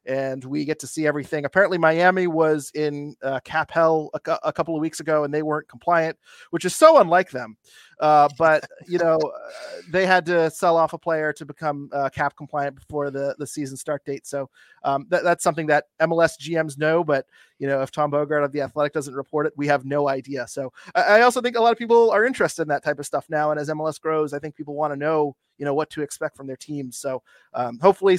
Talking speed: 245 wpm